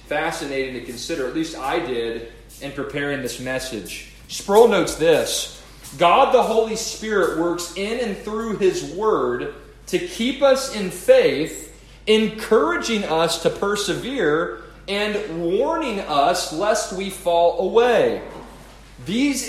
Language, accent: English, American